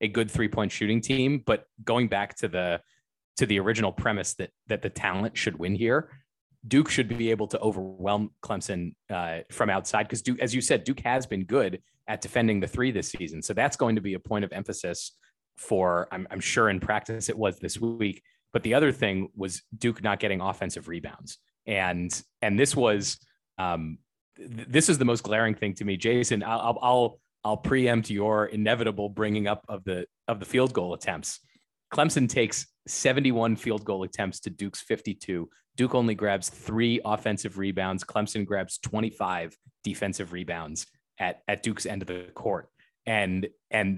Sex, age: male, 30-49